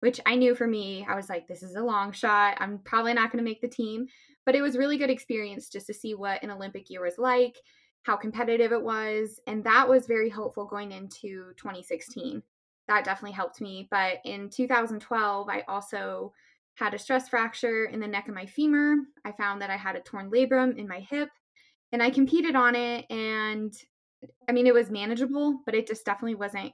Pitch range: 200-250 Hz